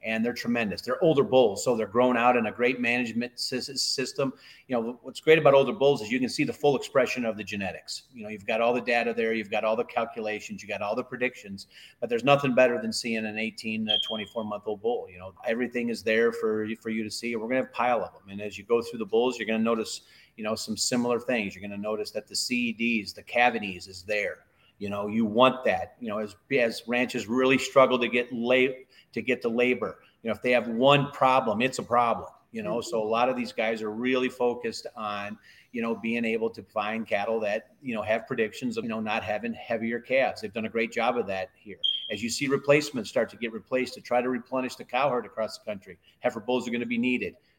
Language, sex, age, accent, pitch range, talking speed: English, male, 30-49, American, 110-125 Hz, 250 wpm